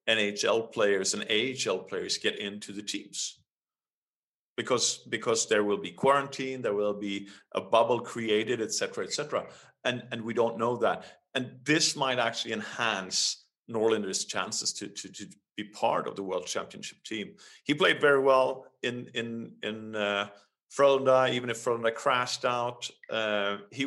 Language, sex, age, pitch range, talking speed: English, male, 40-59, 105-120 Hz, 160 wpm